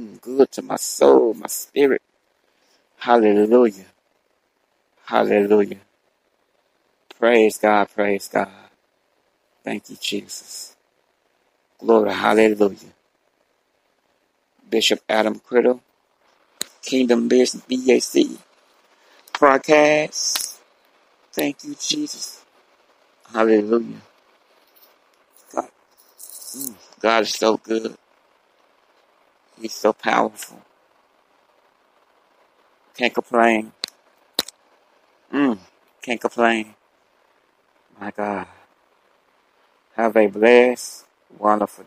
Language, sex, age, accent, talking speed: English, male, 60-79, American, 65 wpm